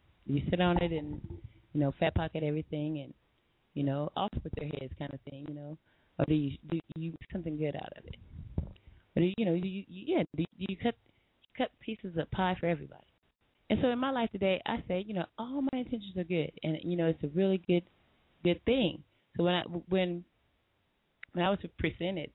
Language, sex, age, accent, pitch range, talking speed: English, female, 20-39, American, 150-190 Hz, 215 wpm